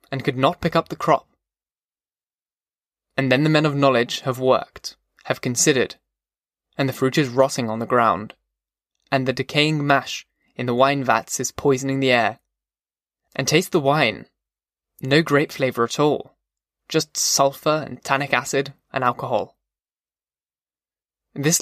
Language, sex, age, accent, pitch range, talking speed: English, male, 20-39, British, 130-150 Hz, 150 wpm